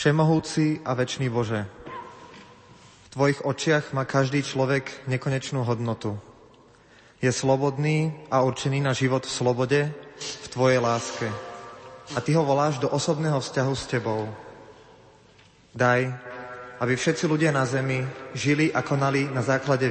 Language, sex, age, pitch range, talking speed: Slovak, male, 30-49, 125-140 Hz, 130 wpm